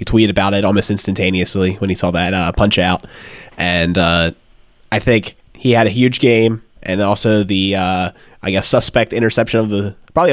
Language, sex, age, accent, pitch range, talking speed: English, male, 20-39, American, 100-145 Hz, 190 wpm